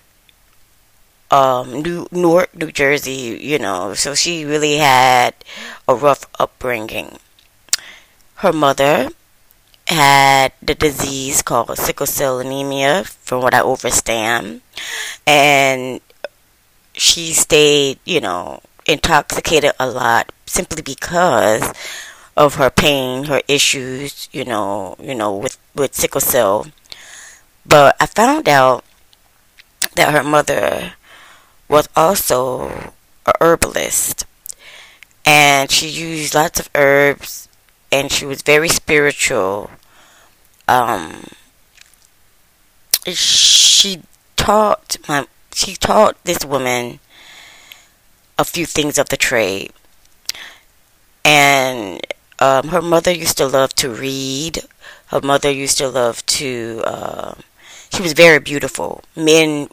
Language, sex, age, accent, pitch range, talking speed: English, female, 20-39, American, 130-150 Hz, 110 wpm